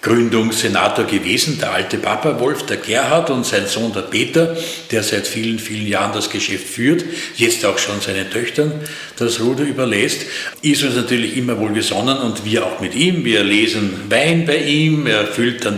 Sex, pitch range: male, 105-140 Hz